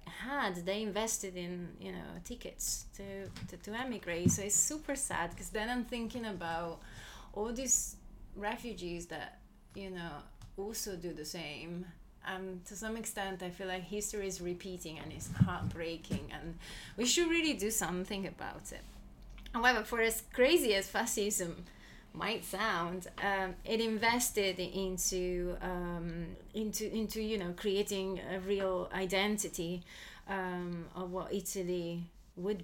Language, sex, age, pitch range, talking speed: English, female, 20-39, 175-205 Hz, 140 wpm